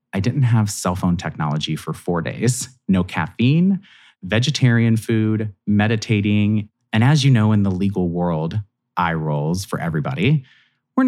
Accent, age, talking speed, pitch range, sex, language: American, 30-49, 145 wpm, 90-120 Hz, male, English